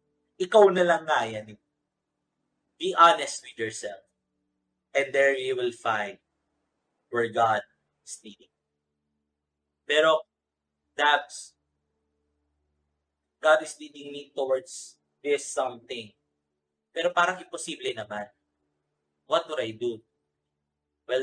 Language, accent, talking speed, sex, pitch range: English, Filipino, 95 wpm, male, 100-155 Hz